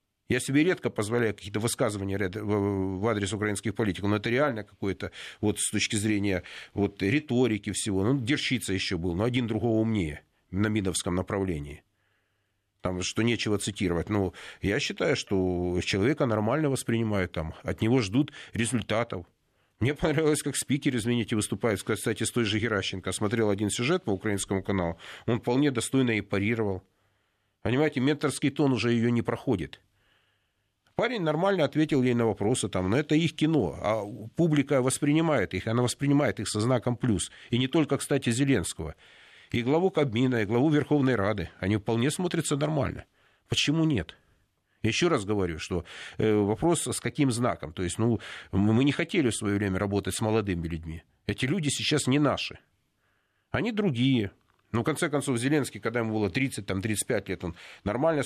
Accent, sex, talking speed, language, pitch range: native, male, 160 wpm, Russian, 100-130 Hz